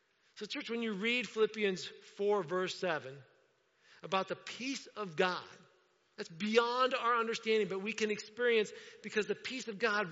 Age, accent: 50-69, American